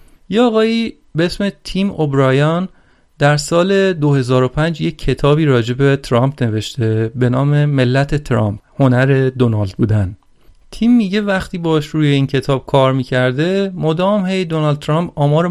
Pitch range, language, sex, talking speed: 130-170 Hz, Persian, male, 130 wpm